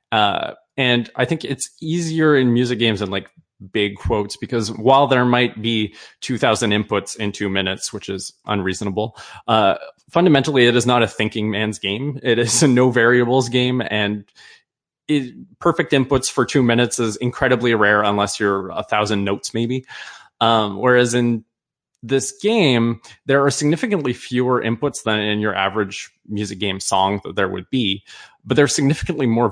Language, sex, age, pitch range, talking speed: English, male, 20-39, 105-130 Hz, 165 wpm